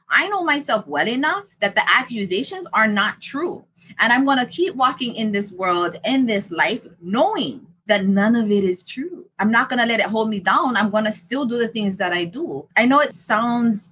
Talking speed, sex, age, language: 230 wpm, female, 20-39, English